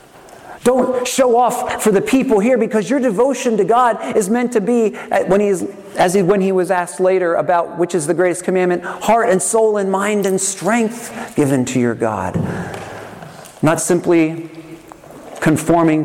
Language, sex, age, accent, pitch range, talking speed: English, male, 40-59, American, 135-190 Hz, 155 wpm